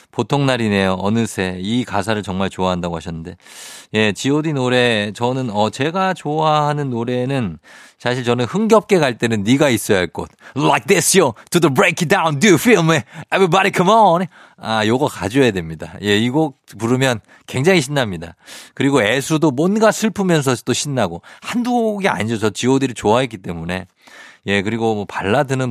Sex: male